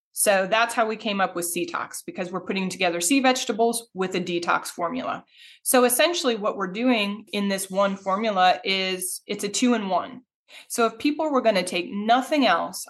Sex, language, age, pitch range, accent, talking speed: female, English, 20-39, 175-215 Hz, American, 195 wpm